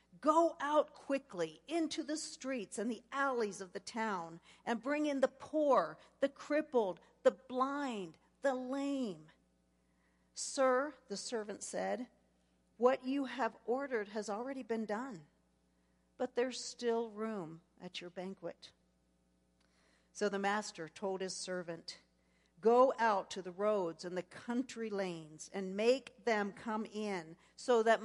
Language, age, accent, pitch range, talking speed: English, 50-69, American, 165-235 Hz, 135 wpm